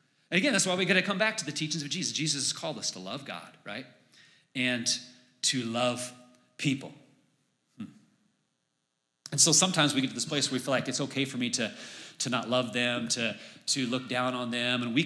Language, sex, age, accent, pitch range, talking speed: English, male, 30-49, American, 125-150 Hz, 210 wpm